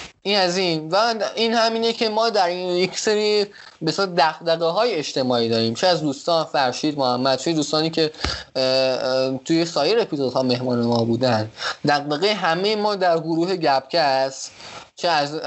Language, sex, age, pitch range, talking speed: Persian, male, 20-39, 130-170 Hz, 155 wpm